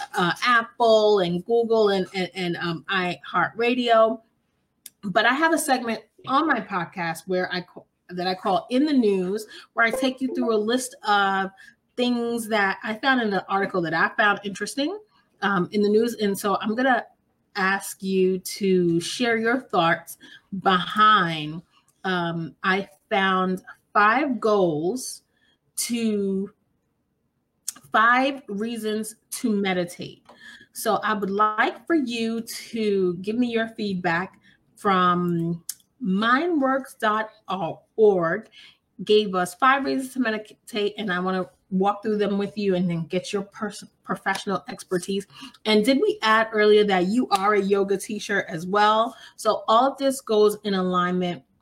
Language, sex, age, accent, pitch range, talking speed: English, female, 30-49, American, 185-230 Hz, 145 wpm